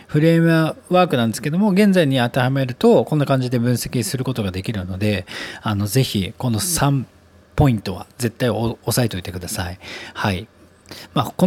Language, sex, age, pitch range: Japanese, male, 40-59, 105-155 Hz